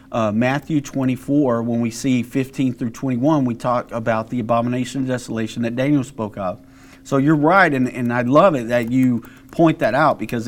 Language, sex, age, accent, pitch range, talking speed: English, male, 40-59, American, 125-155 Hz, 195 wpm